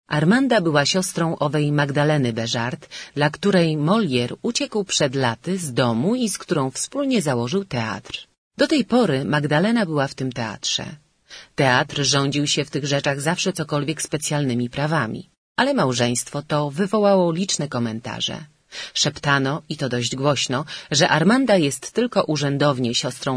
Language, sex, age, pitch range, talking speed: Ukrainian, female, 30-49, 130-175 Hz, 140 wpm